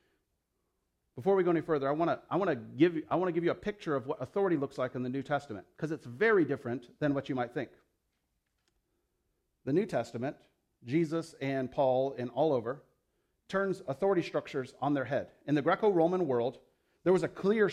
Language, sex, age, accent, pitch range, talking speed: English, male, 40-59, American, 150-195 Hz, 185 wpm